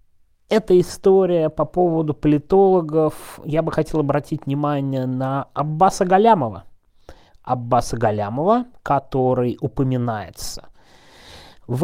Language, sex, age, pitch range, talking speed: Russian, male, 30-49, 120-155 Hz, 90 wpm